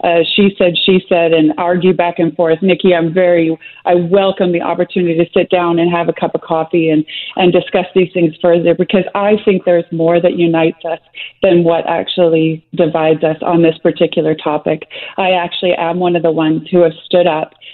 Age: 30-49